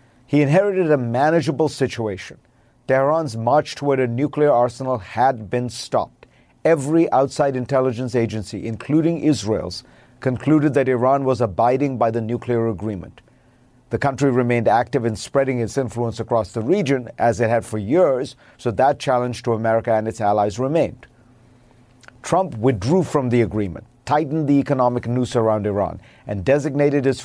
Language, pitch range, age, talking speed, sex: English, 115-140 Hz, 50-69, 150 wpm, male